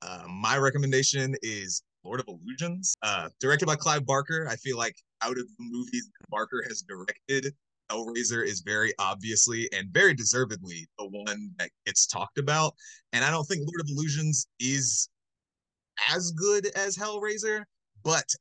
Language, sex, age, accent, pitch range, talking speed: English, male, 20-39, American, 115-150 Hz, 160 wpm